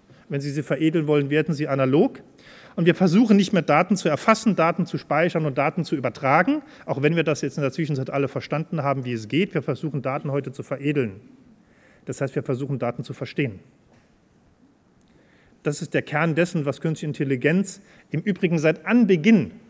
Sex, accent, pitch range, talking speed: male, German, 140-175 Hz, 190 wpm